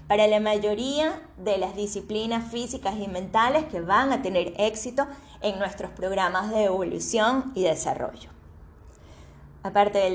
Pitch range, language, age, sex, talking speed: 180-235 Hz, Spanish, 10-29, female, 135 wpm